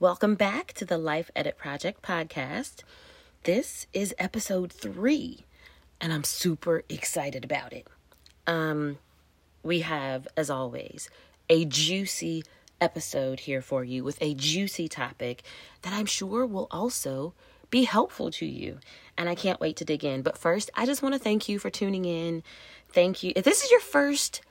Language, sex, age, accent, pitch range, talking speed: English, female, 30-49, American, 150-215 Hz, 165 wpm